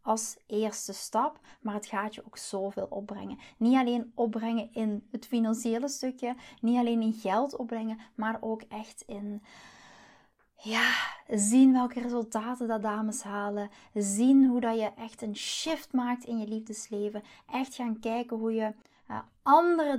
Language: Dutch